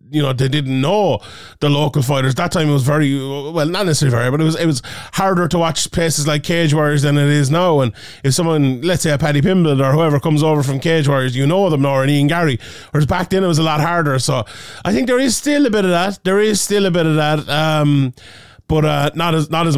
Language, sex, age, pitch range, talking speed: English, male, 30-49, 140-170 Hz, 265 wpm